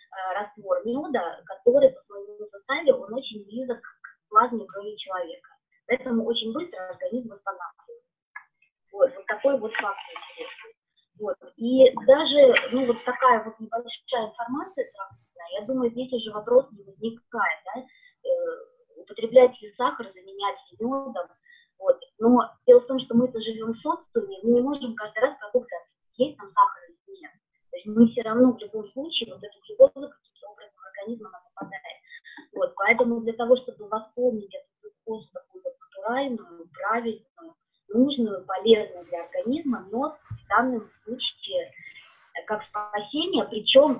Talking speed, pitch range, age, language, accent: 135 wpm, 215-275 Hz, 20-39, Russian, native